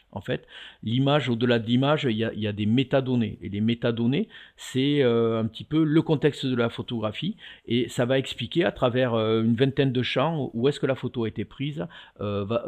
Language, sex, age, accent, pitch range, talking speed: French, male, 50-69, French, 110-135 Hz, 210 wpm